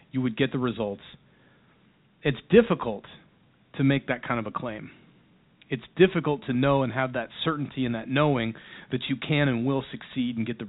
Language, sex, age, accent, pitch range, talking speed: English, male, 40-59, American, 115-140 Hz, 190 wpm